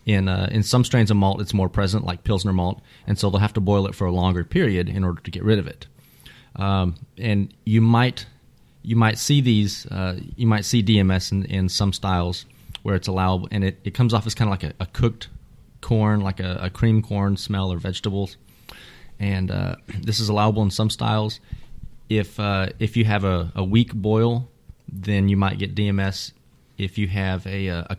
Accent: American